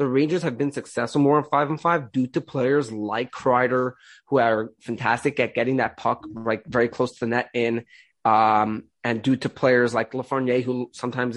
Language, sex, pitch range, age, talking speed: English, male, 120-150 Hz, 20-39, 200 wpm